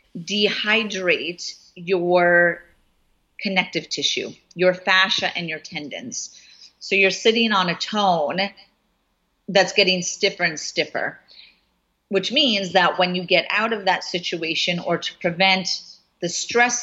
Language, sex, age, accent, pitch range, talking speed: English, female, 40-59, American, 175-205 Hz, 125 wpm